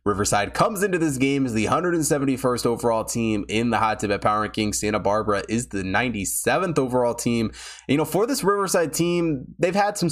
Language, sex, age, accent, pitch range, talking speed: English, male, 20-39, American, 110-145 Hz, 195 wpm